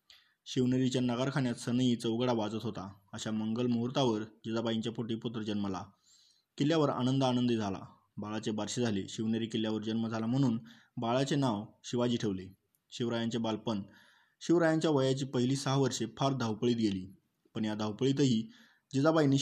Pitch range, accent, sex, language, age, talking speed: 110-130 Hz, native, male, Marathi, 20-39, 130 wpm